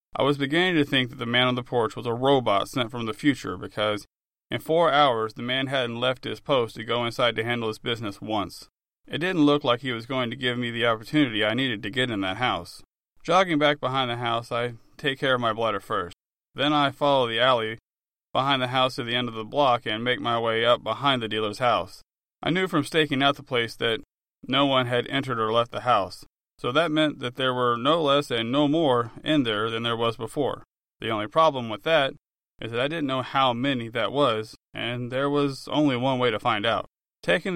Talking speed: 235 wpm